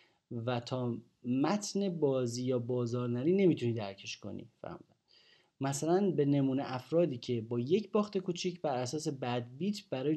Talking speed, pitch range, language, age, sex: 140 wpm, 120-165 Hz, Persian, 30-49, male